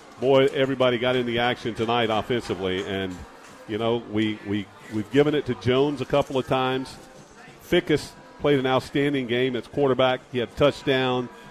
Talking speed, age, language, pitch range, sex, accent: 170 wpm, 50-69, English, 105-130 Hz, male, American